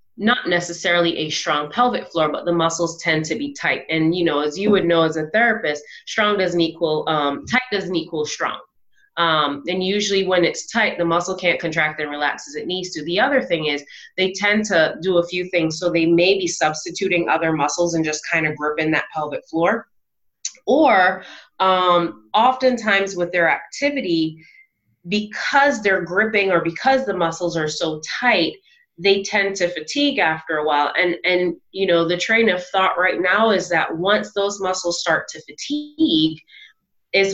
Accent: American